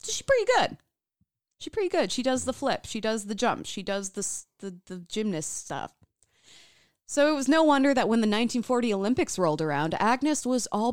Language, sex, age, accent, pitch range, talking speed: English, female, 20-39, American, 180-255 Hz, 200 wpm